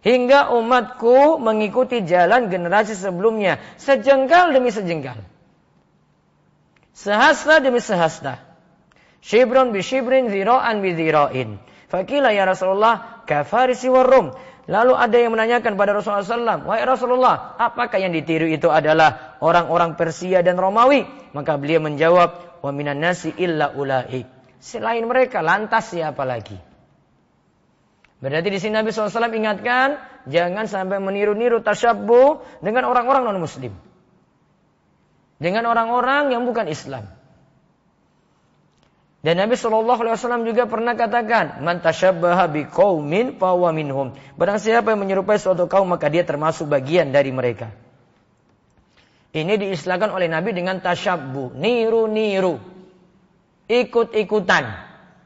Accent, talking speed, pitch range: native, 110 wpm, 165-235 Hz